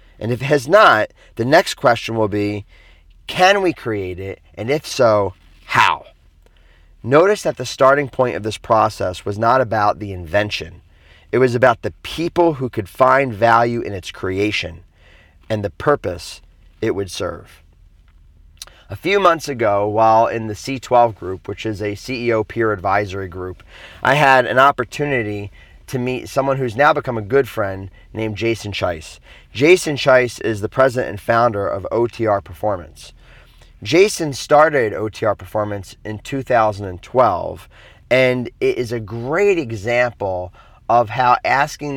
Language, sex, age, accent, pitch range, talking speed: English, male, 30-49, American, 95-130 Hz, 150 wpm